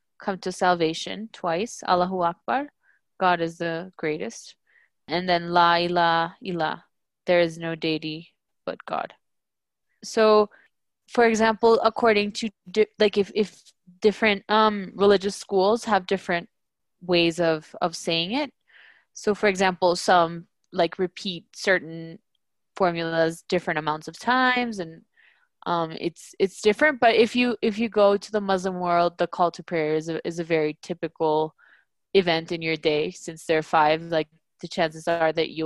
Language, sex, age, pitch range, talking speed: English, female, 20-39, 165-205 Hz, 150 wpm